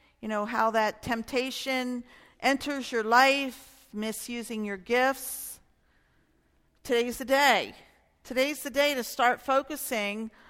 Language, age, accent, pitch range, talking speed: English, 50-69, American, 205-255 Hz, 115 wpm